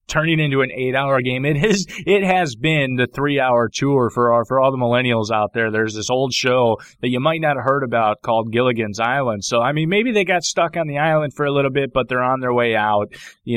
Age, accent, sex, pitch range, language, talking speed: 20-39, American, male, 120-150 Hz, English, 255 wpm